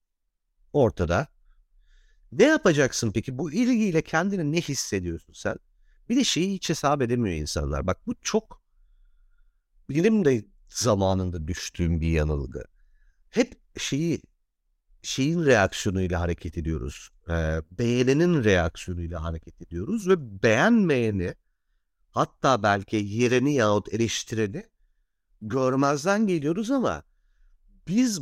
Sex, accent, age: male, native, 50-69